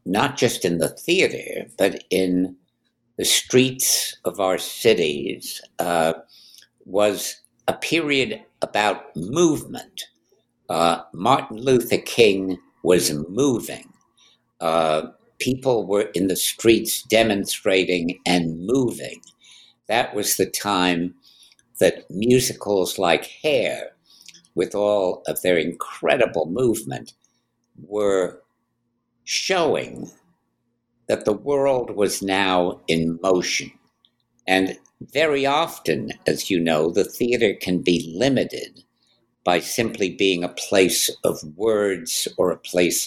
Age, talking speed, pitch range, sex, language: 60-79, 105 wpm, 90-120 Hz, male, English